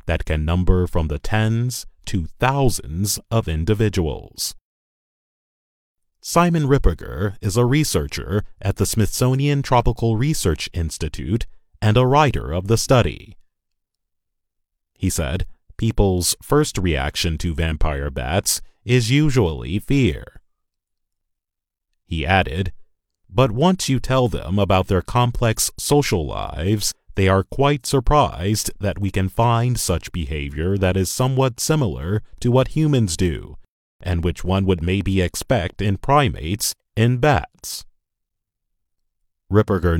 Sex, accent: male, American